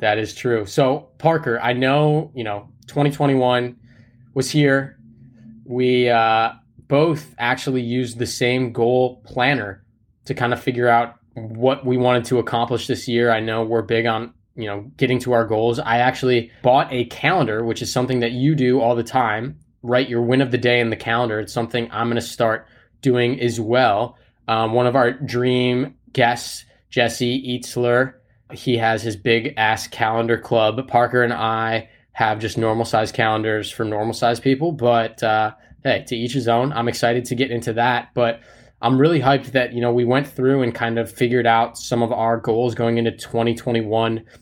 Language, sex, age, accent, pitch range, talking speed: English, male, 20-39, American, 115-130 Hz, 185 wpm